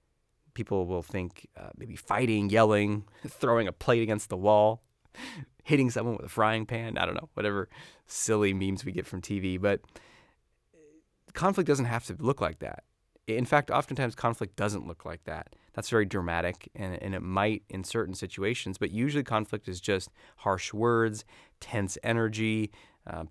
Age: 30-49